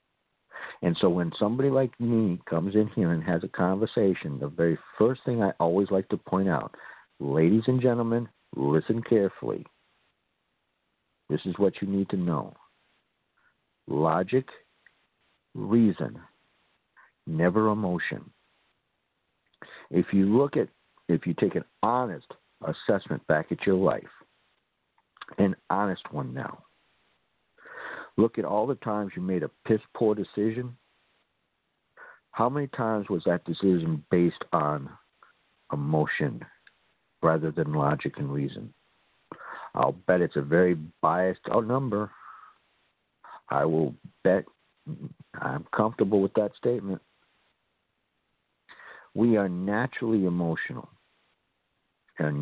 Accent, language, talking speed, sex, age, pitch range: American, English, 115 wpm, male, 50-69, 85-115 Hz